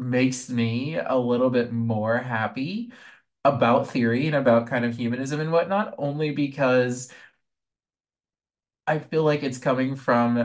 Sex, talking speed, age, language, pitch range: male, 140 wpm, 20-39, English, 110-130 Hz